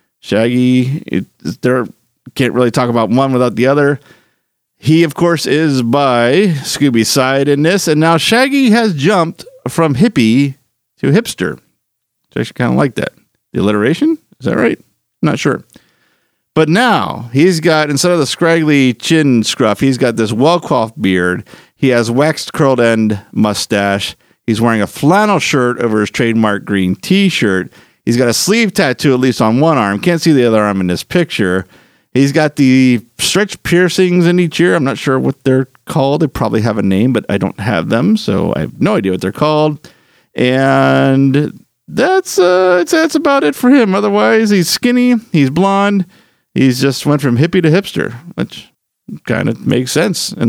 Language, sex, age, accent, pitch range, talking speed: English, male, 50-69, American, 115-175 Hz, 180 wpm